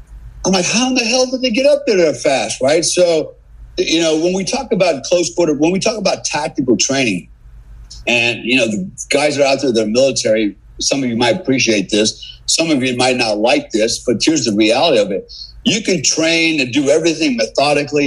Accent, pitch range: American, 125-170 Hz